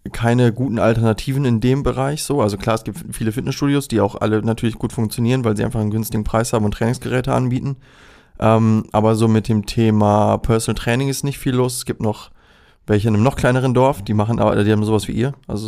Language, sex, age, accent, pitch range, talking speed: German, male, 20-39, German, 110-130 Hz, 225 wpm